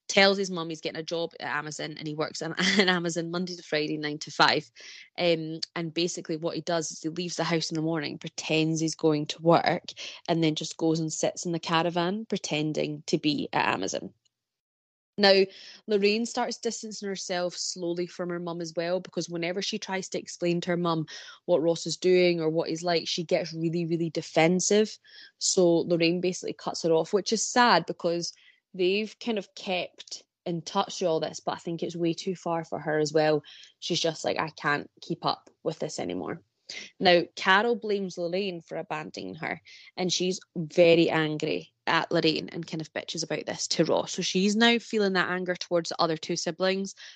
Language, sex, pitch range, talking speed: English, female, 165-195 Hz, 200 wpm